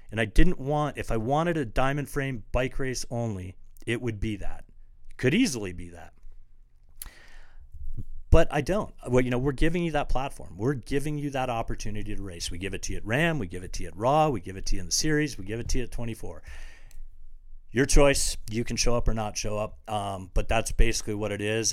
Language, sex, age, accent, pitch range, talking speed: English, male, 40-59, American, 95-125 Hz, 235 wpm